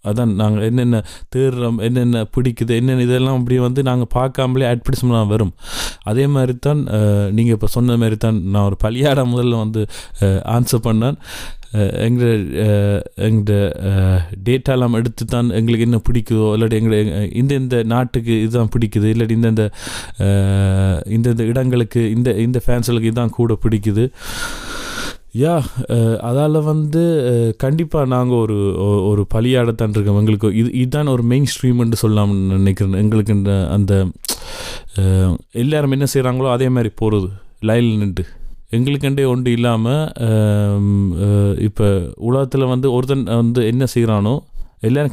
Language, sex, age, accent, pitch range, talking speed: Tamil, male, 30-49, native, 105-125 Hz, 120 wpm